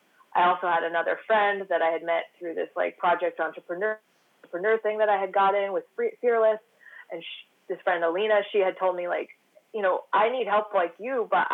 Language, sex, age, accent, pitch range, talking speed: English, female, 20-39, American, 175-220 Hz, 200 wpm